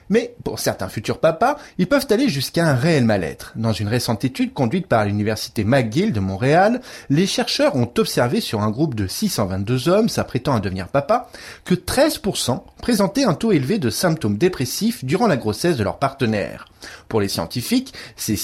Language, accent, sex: French, French, male